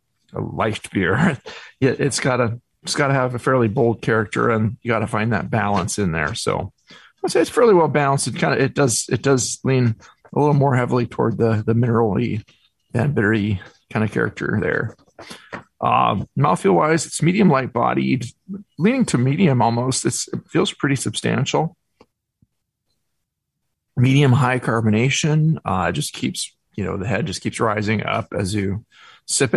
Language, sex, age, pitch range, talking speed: English, male, 40-59, 110-145 Hz, 175 wpm